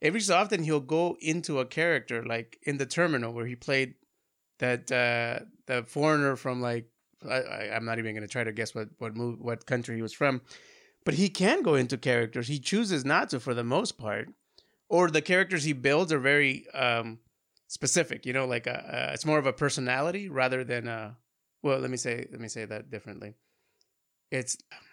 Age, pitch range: 30-49, 120-150 Hz